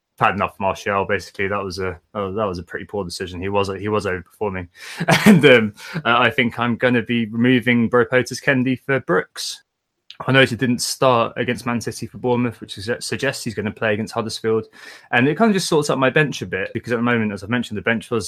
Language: English